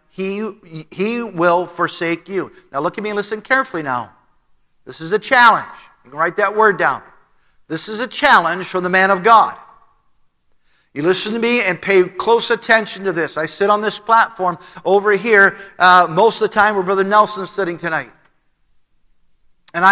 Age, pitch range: 50-69, 180-225 Hz